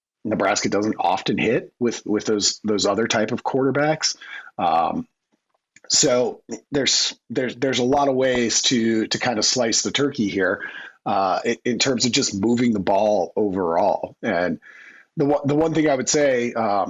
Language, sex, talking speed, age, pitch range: English, male, 170 wpm, 30-49, 110-135 Hz